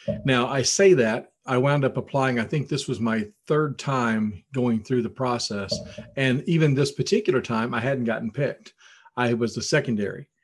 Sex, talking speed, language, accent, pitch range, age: male, 185 wpm, English, American, 115-135 Hz, 40-59